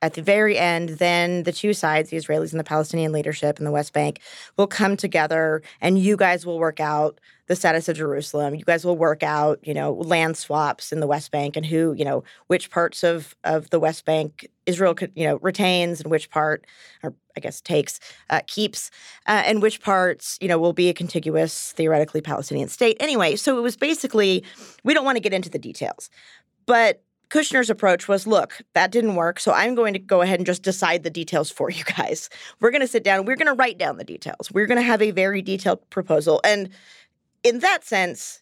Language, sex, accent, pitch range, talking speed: English, female, American, 160-205 Hz, 220 wpm